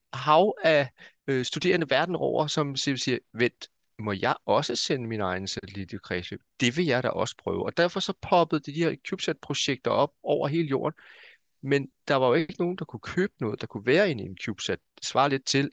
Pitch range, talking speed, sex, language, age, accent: 110-150 Hz, 210 wpm, male, Danish, 30-49, native